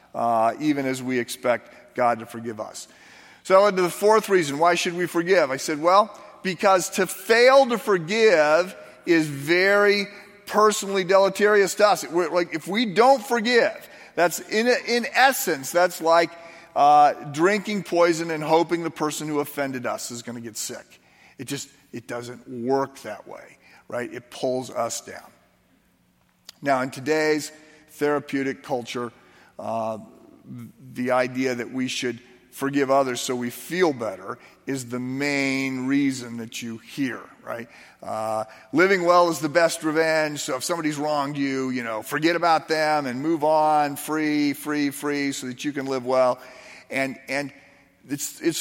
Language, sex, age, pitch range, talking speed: English, male, 40-59, 130-175 Hz, 160 wpm